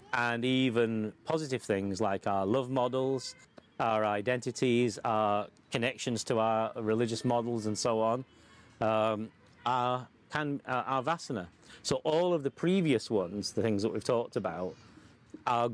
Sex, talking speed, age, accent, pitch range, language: male, 135 wpm, 30-49, British, 115-140 Hz, English